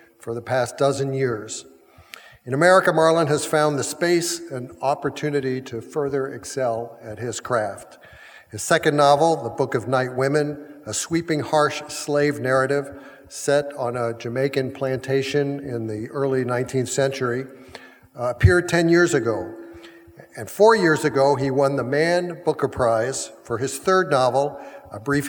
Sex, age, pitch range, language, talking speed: male, 50-69, 125-155 Hz, English, 150 wpm